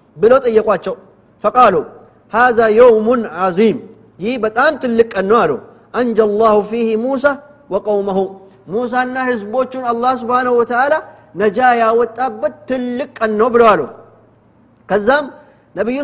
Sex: male